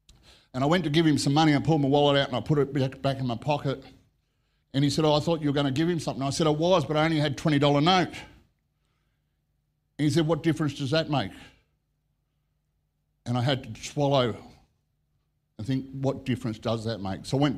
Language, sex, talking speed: English, male, 230 wpm